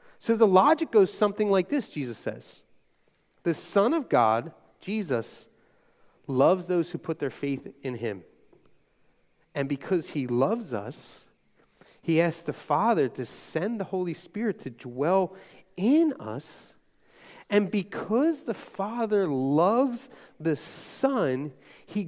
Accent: American